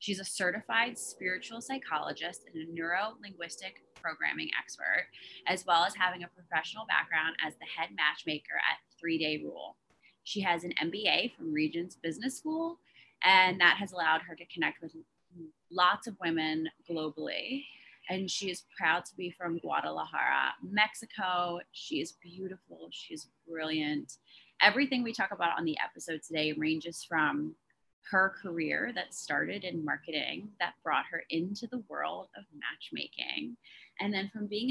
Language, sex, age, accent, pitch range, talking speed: English, female, 20-39, American, 160-205 Hz, 150 wpm